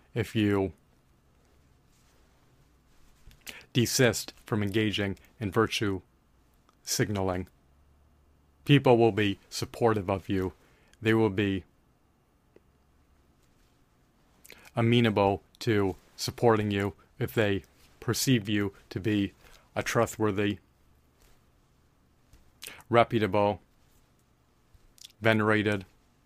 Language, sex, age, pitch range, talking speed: English, male, 30-49, 95-110 Hz, 70 wpm